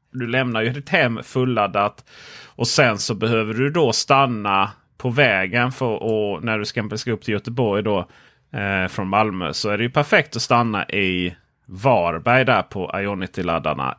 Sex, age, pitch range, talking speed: male, 30-49, 105-145 Hz, 165 wpm